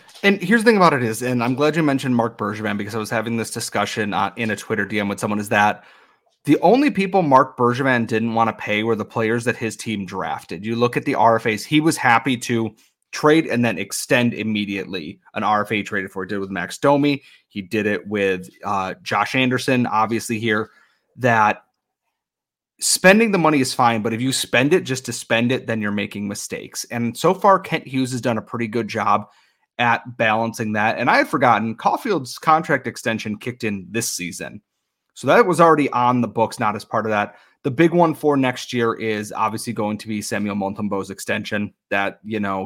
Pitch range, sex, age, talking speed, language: 105-130 Hz, male, 30-49, 210 wpm, English